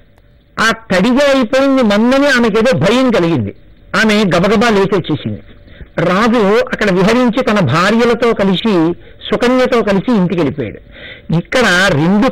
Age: 60-79